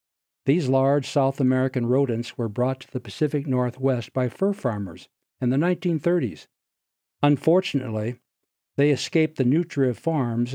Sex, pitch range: male, 125-150 Hz